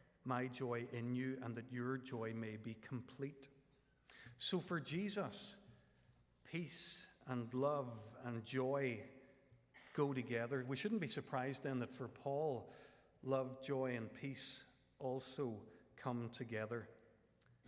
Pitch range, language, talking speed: 110-130 Hz, English, 120 wpm